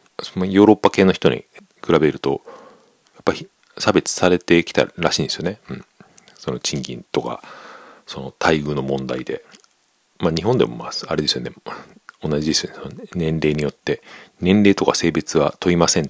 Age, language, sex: 40-59, Japanese, male